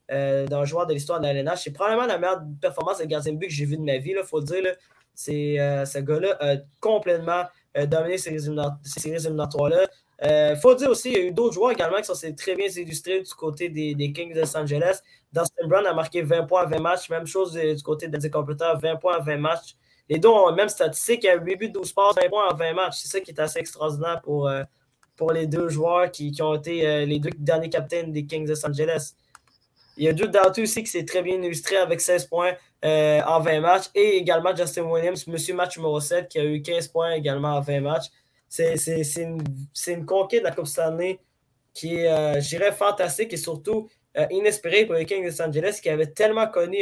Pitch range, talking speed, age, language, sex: 155-185 Hz, 245 wpm, 20-39, French, male